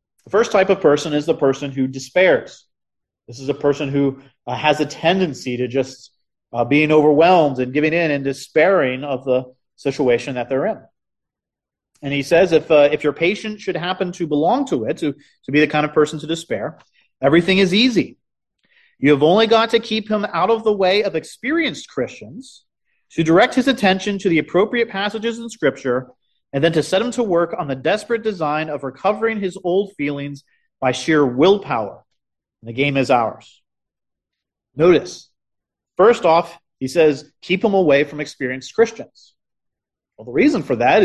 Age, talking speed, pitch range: 30-49, 180 wpm, 145-210 Hz